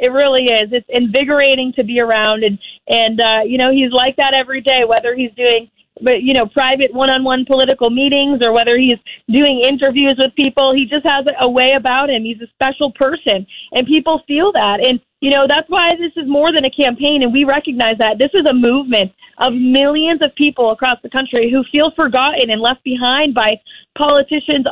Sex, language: female, English